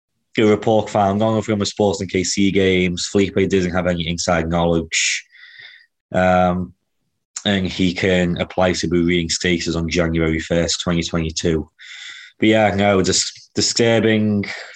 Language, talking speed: English, 135 wpm